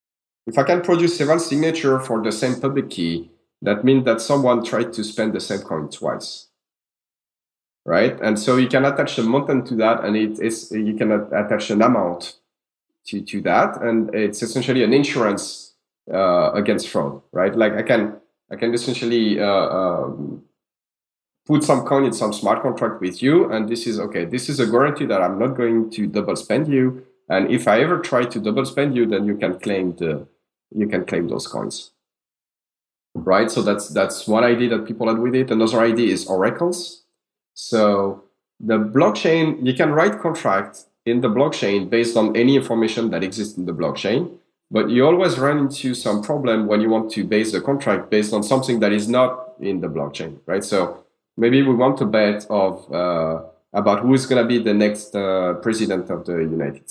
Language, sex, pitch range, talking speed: English, male, 105-130 Hz, 190 wpm